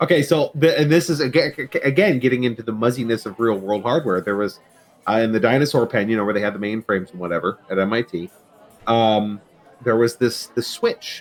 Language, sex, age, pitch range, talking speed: English, male, 30-49, 100-125 Hz, 205 wpm